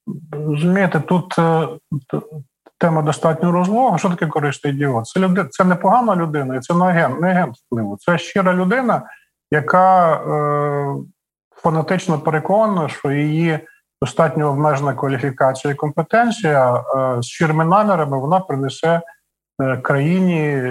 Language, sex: Ukrainian, male